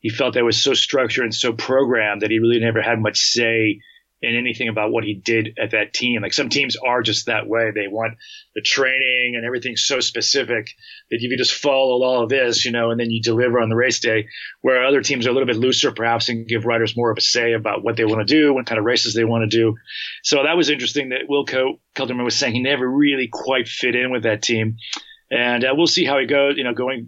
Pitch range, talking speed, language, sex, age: 115-145 Hz, 260 wpm, English, male, 30-49